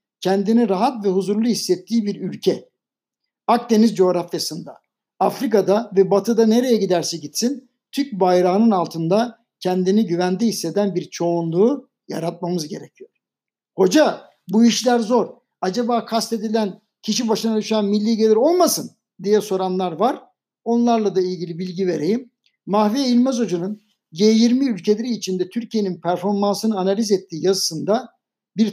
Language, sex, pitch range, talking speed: Turkish, male, 190-230 Hz, 120 wpm